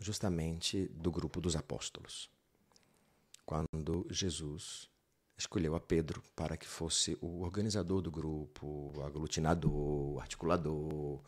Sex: male